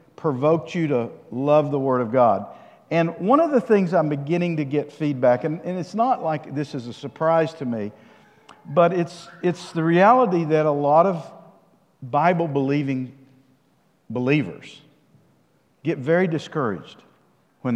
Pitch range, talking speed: 135-165 Hz, 150 wpm